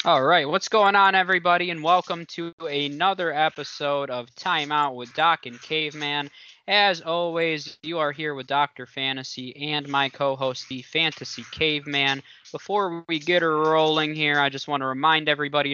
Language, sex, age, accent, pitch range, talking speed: English, male, 20-39, American, 135-160 Hz, 160 wpm